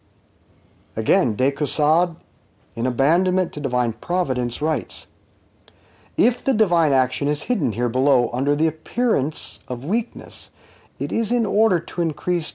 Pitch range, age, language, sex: 110-175 Hz, 50-69, English, male